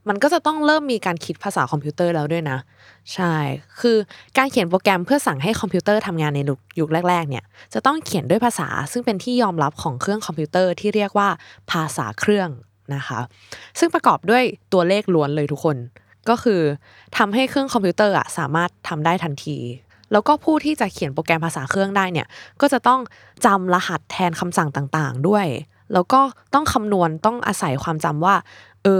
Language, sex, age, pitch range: Thai, female, 20-39, 150-205 Hz